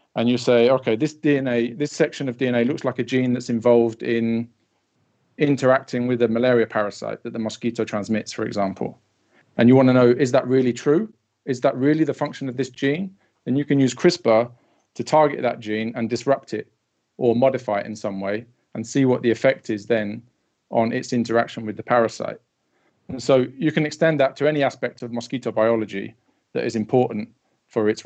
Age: 40-59